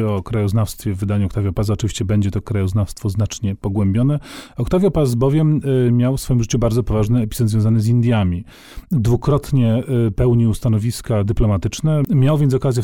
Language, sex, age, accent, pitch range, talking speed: Polish, male, 40-59, native, 105-135 Hz, 150 wpm